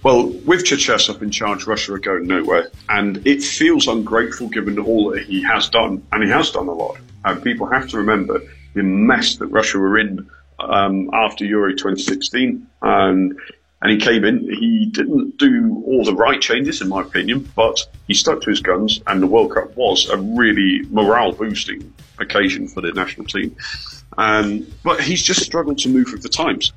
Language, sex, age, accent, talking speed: English, male, 40-59, British, 190 wpm